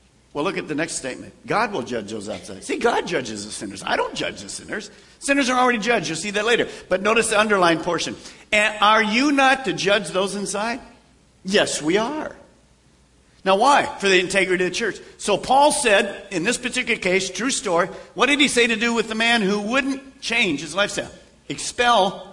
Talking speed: 205 wpm